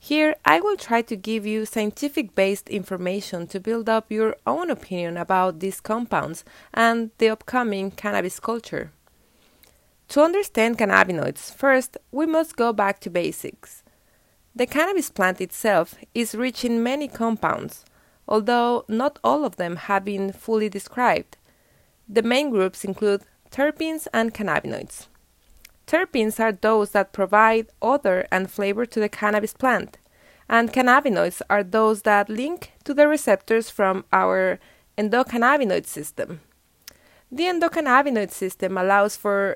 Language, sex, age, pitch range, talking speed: English, female, 20-39, 200-255 Hz, 135 wpm